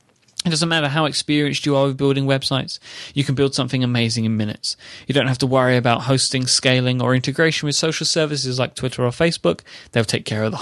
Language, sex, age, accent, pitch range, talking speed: English, male, 20-39, British, 115-140 Hz, 220 wpm